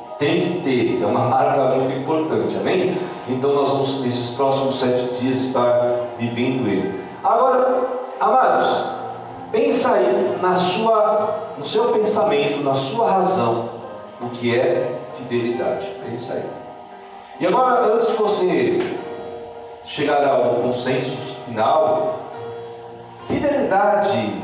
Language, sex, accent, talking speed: Portuguese, male, Brazilian, 115 wpm